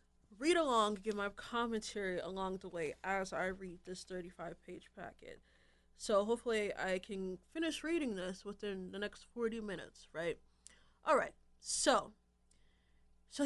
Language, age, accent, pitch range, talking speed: English, 20-39, American, 170-225 Hz, 145 wpm